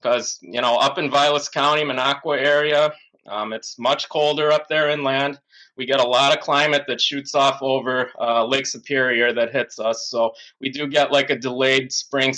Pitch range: 125-145 Hz